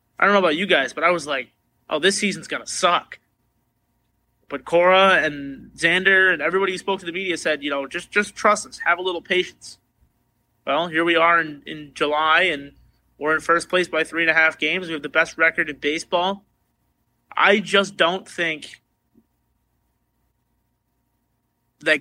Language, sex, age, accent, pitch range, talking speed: English, male, 30-49, American, 145-185 Hz, 185 wpm